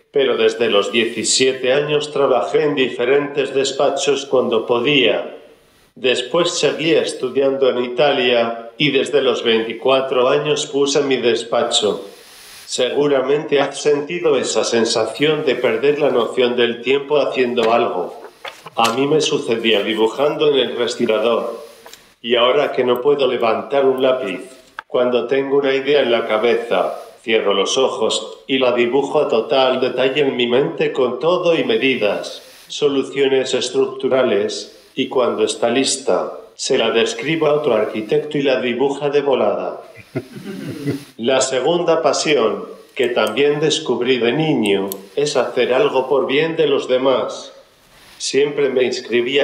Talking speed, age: 135 wpm, 50-69